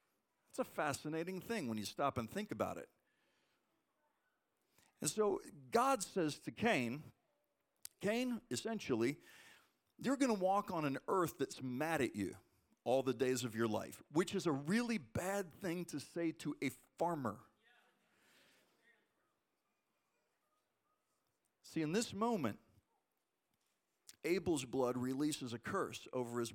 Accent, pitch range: American, 125-190 Hz